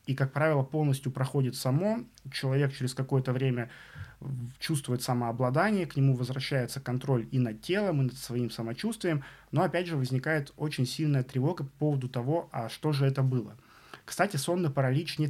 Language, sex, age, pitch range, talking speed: Russian, male, 20-39, 125-150 Hz, 165 wpm